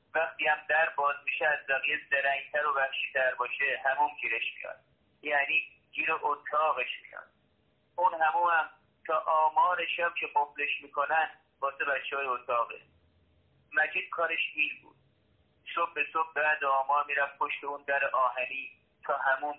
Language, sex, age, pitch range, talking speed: Persian, male, 30-49, 135-160 Hz, 150 wpm